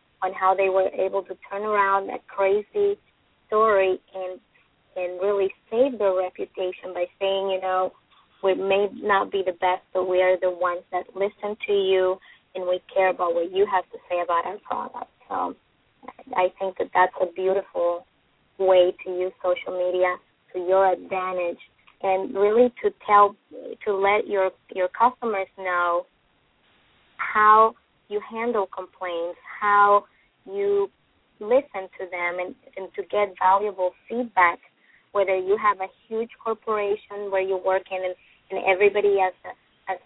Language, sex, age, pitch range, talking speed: English, female, 20-39, 185-205 Hz, 155 wpm